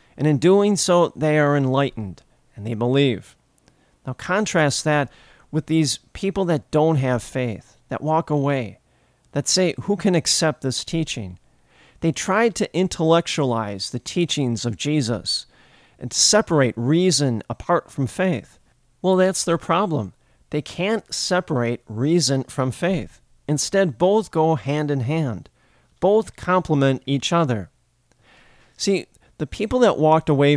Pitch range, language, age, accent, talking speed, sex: 125-170 Hz, English, 40-59, American, 135 wpm, male